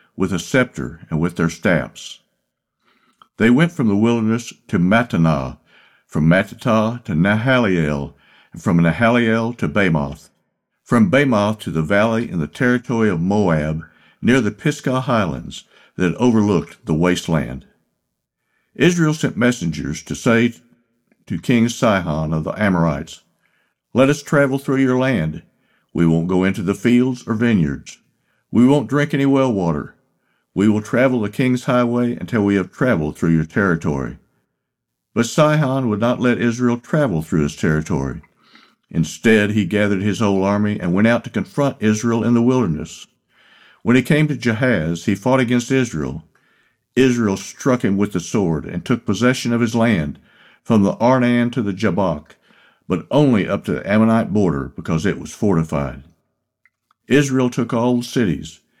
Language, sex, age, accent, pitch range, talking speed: English, male, 60-79, American, 90-125 Hz, 155 wpm